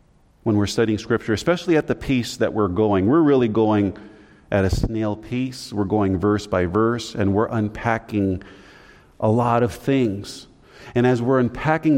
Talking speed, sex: 170 wpm, male